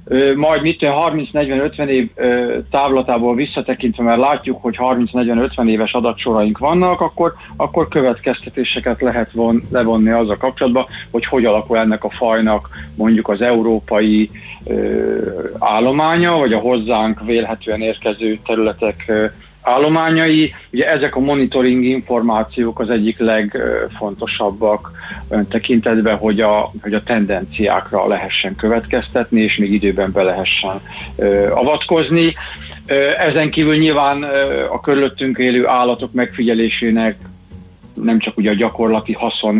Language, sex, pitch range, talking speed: Hungarian, male, 105-125 Hz, 115 wpm